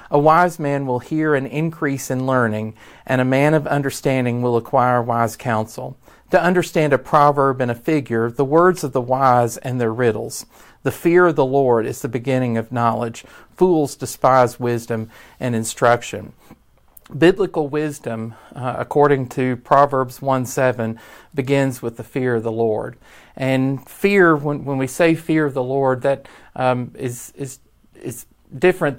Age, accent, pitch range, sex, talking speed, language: 40-59, American, 120-140 Hz, male, 165 wpm, English